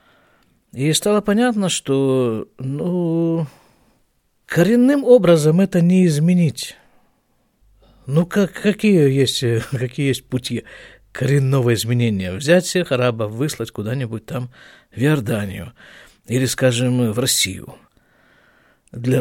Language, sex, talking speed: Russian, male, 100 wpm